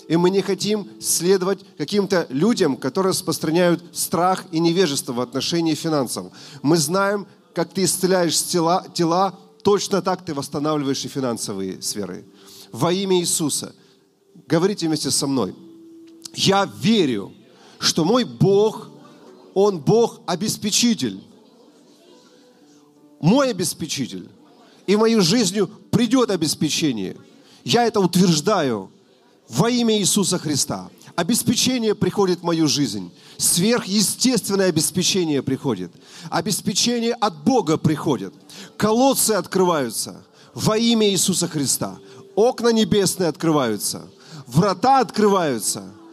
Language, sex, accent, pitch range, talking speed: Russian, male, native, 155-205 Hz, 105 wpm